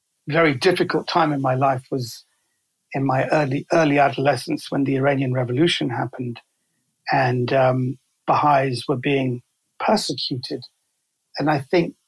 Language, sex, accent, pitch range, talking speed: English, male, British, 135-160 Hz, 130 wpm